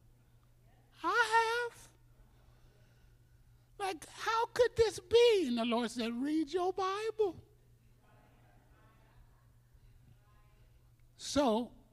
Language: English